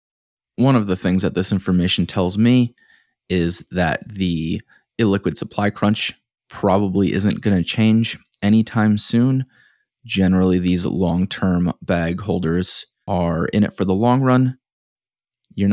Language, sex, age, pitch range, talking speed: English, male, 20-39, 95-110 Hz, 135 wpm